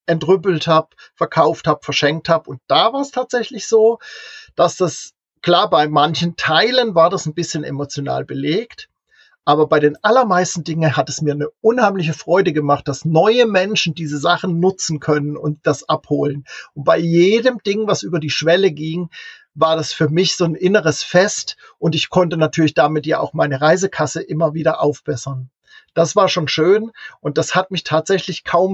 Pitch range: 150-180 Hz